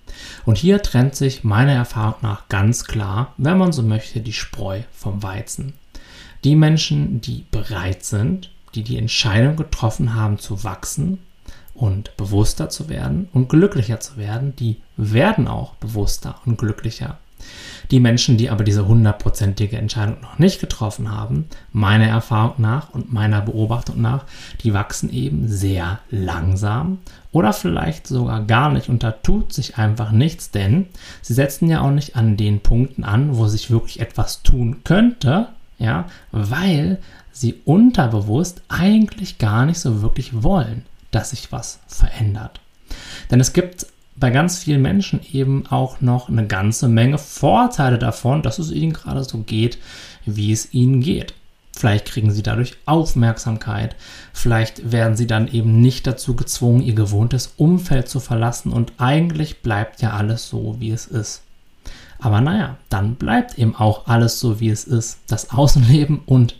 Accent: German